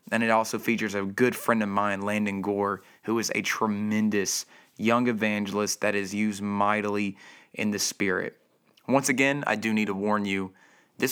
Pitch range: 100-110 Hz